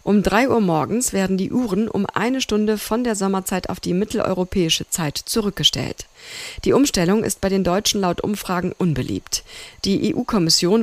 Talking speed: 160 wpm